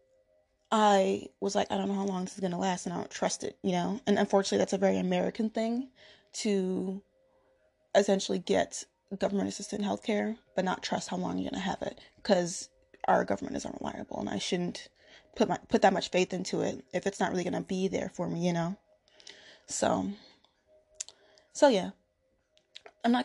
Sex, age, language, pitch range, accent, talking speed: female, 20-39, English, 180-210 Hz, American, 195 wpm